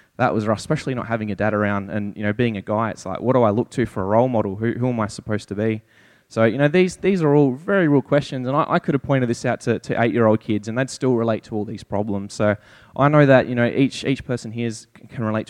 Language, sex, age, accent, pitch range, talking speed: English, male, 20-39, Australian, 110-155 Hz, 300 wpm